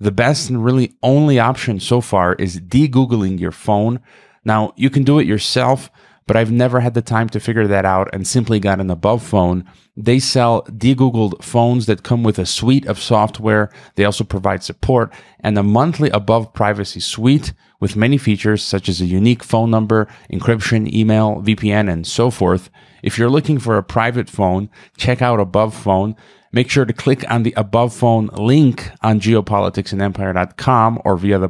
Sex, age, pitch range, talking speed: male, 30-49, 95-120 Hz, 180 wpm